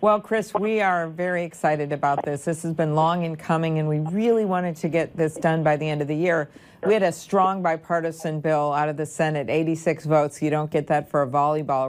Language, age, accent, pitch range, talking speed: English, 50-69, American, 150-170 Hz, 235 wpm